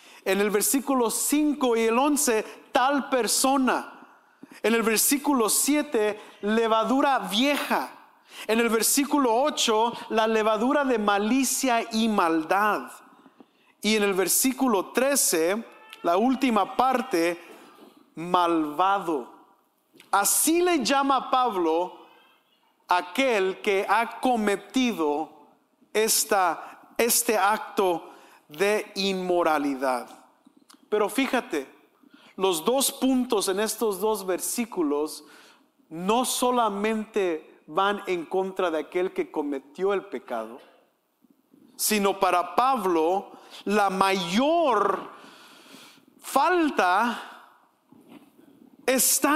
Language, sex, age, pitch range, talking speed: English, male, 50-69, 200-280 Hz, 90 wpm